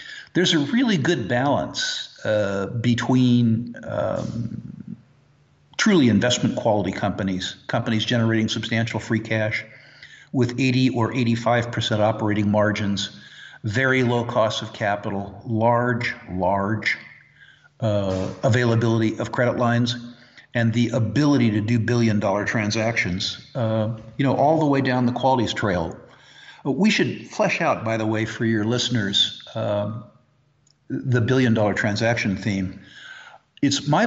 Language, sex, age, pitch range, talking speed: English, male, 50-69, 105-130 Hz, 125 wpm